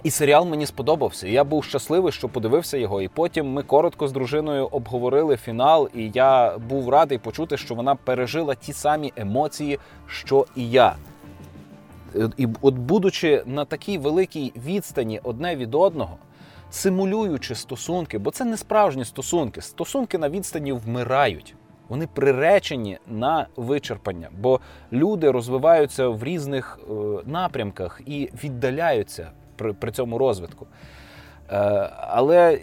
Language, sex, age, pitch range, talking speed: Ukrainian, male, 20-39, 120-160 Hz, 125 wpm